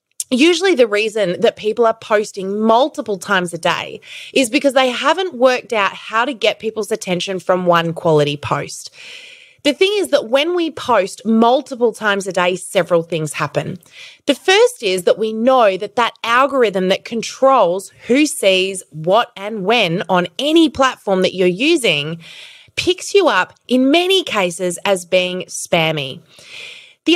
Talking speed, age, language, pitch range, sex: 160 wpm, 20-39, English, 195-290 Hz, female